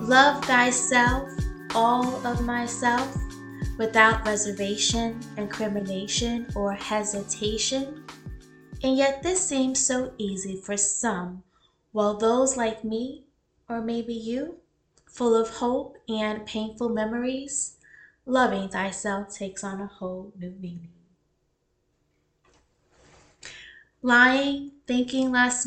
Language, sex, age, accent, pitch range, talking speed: English, female, 20-39, American, 205-245 Hz, 100 wpm